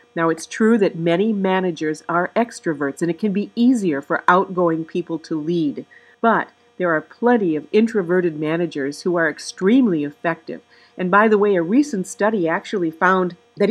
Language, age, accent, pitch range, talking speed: English, 50-69, American, 175-235 Hz, 170 wpm